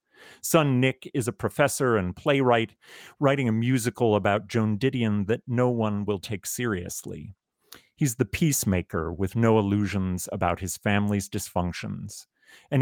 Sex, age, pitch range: male, 40-59, 95-120 Hz